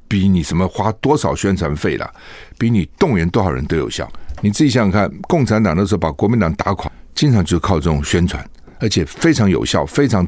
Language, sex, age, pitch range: Chinese, male, 60-79, 85-115 Hz